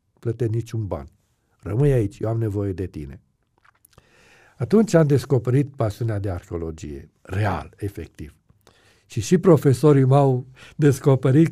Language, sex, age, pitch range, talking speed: Romanian, male, 60-79, 105-140 Hz, 120 wpm